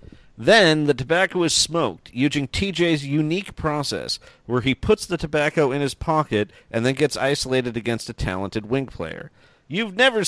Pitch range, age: 125-175 Hz, 40-59